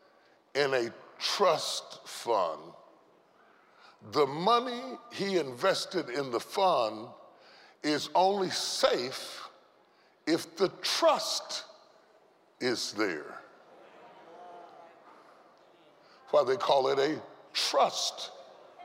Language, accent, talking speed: English, American, 80 wpm